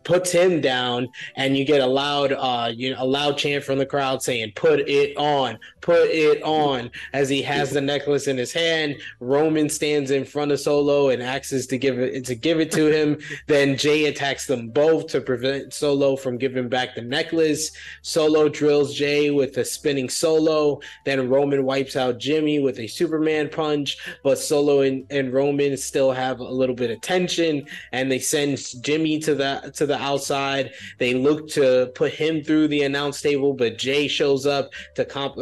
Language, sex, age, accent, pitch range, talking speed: English, male, 20-39, American, 130-150 Hz, 190 wpm